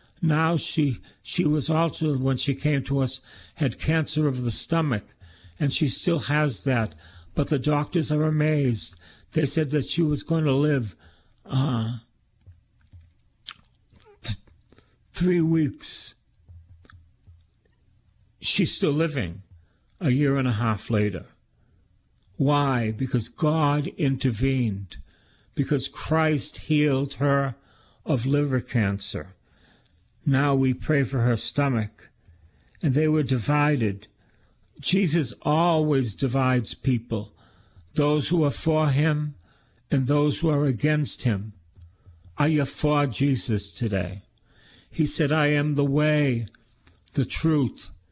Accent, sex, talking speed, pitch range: American, male, 120 wpm, 105-150 Hz